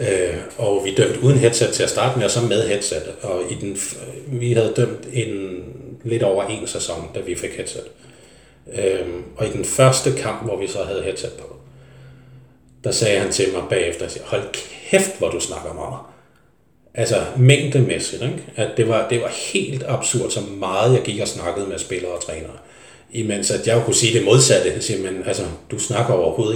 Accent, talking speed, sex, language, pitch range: native, 195 wpm, male, Danish, 105-140 Hz